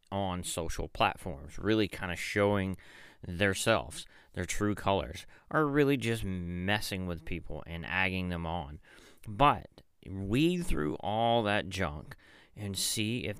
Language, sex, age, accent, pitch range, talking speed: English, male, 30-49, American, 85-110 Hz, 140 wpm